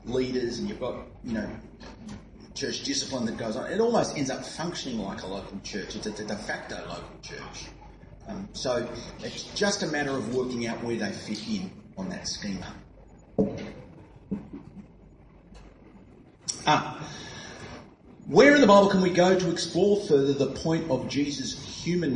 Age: 30-49